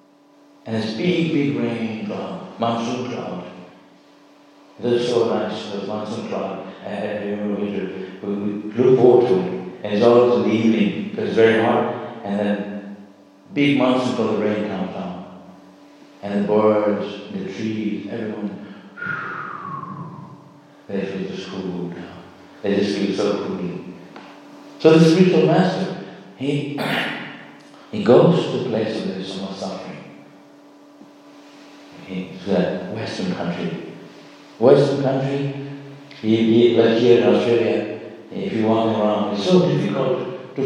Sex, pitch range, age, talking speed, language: male, 100-135 Hz, 60-79, 130 wpm, English